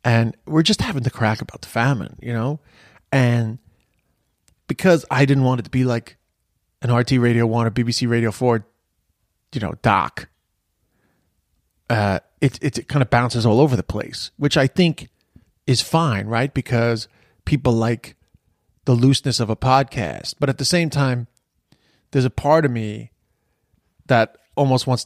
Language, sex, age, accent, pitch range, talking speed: English, male, 30-49, American, 115-140 Hz, 165 wpm